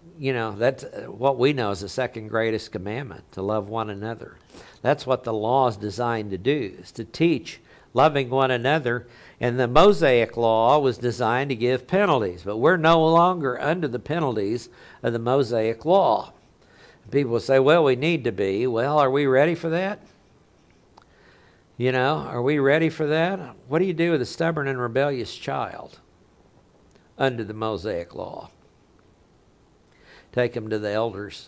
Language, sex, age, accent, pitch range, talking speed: English, male, 60-79, American, 110-140 Hz, 170 wpm